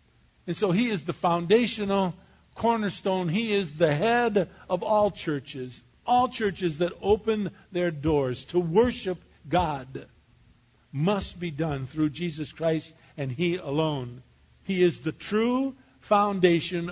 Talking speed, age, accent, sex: 130 wpm, 50-69, American, male